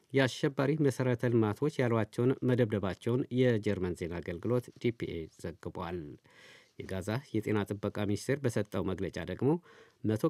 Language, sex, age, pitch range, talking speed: Amharic, male, 50-69, 105-130 Hz, 105 wpm